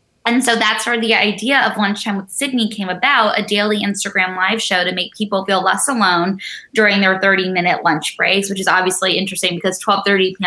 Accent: American